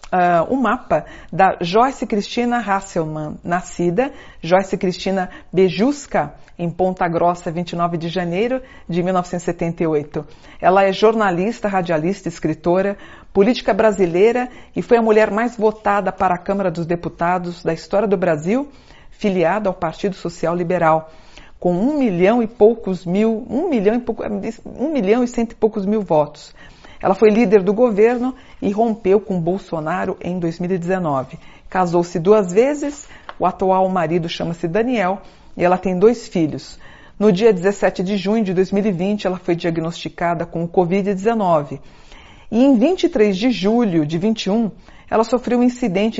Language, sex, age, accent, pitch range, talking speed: Portuguese, female, 50-69, Brazilian, 175-225 Hz, 145 wpm